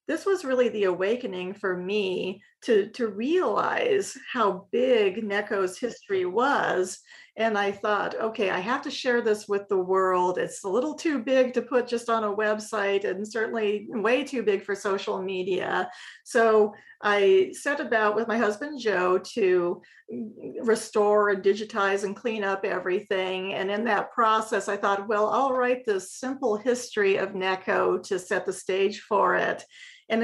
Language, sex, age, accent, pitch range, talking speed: English, female, 40-59, American, 190-235 Hz, 165 wpm